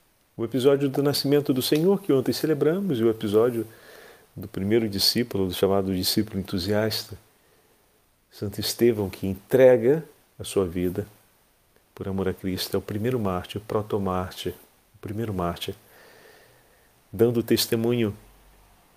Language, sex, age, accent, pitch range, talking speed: Portuguese, male, 40-59, Brazilian, 100-125 Hz, 130 wpm